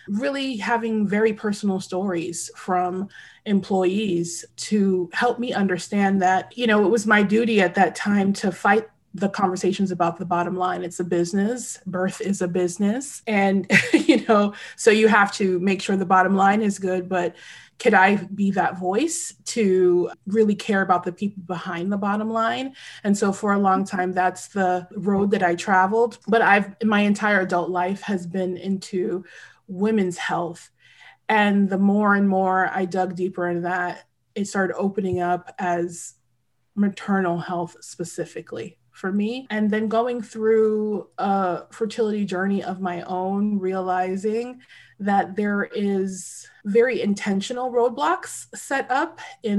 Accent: American